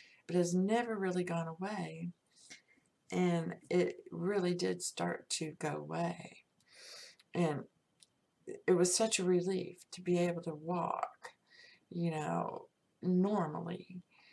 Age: 50-69